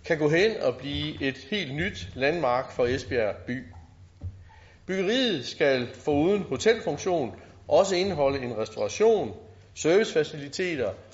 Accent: native